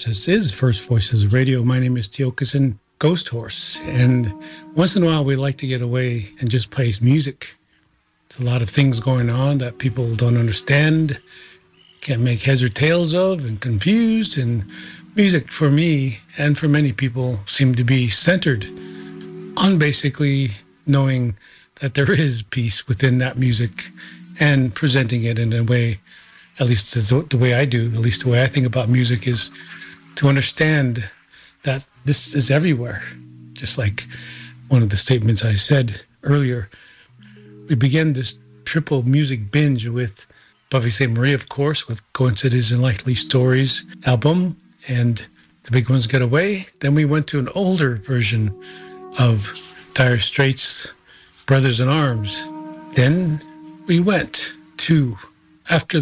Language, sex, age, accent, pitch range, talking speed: English, male, 40-59, American, 120-145 Hz, 155 wpm